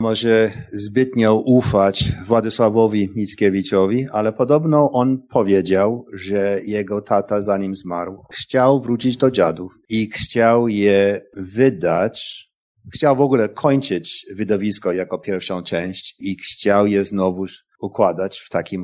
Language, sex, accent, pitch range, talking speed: Polish, male, native, 100-140 Hz, 120 wpm